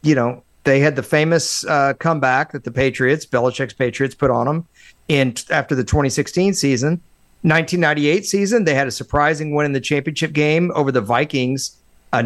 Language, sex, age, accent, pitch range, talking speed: English, male, 40-59, American, 130-165 Hz, 175 wpm